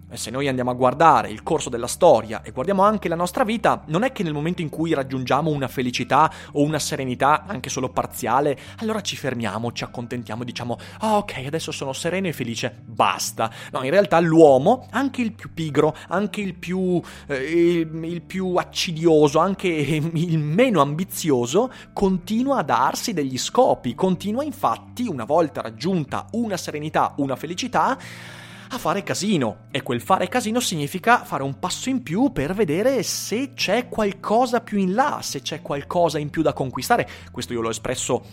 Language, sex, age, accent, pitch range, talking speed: Italian, male, 30-49, native, 125-185 Hz, 175 wpm